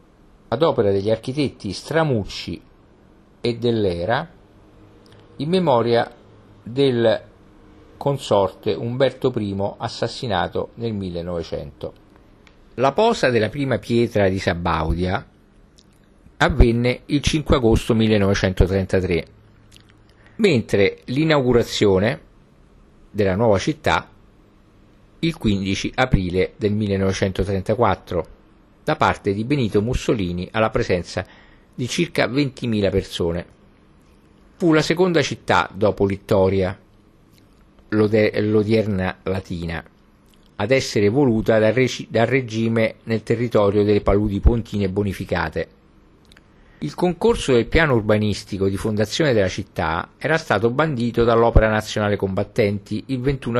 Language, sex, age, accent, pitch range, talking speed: Italian, male, 50-69, native, 100-120 Hz, 95 wpm